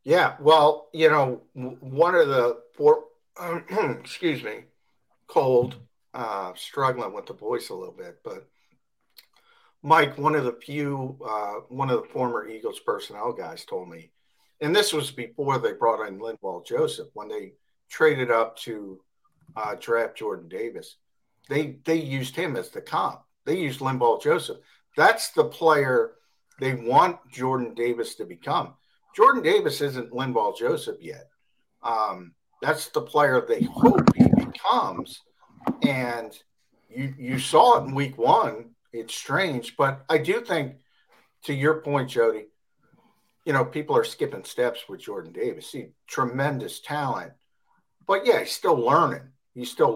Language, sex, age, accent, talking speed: English, male, 50-69, American, 150 wpm